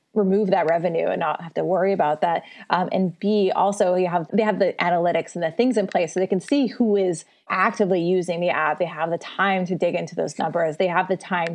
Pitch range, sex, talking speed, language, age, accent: 165-205 Hz, female, 250 wpm, English, 20-39, American